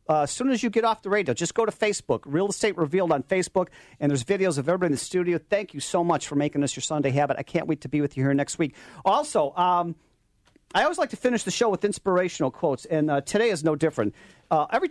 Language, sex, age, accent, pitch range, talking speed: English, male, 40-59, American, 150-195 Hz, 265 wpm